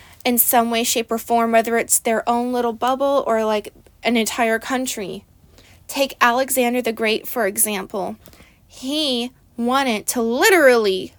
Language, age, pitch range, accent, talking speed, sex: English, 20-39, 225-280 Hz, American, 145 wpm, female